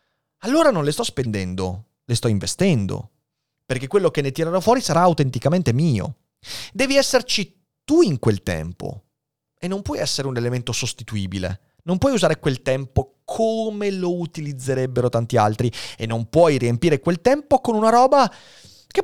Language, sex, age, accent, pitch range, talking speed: Italian, male, 30-49, native, 110-165 Hz, 160 wpm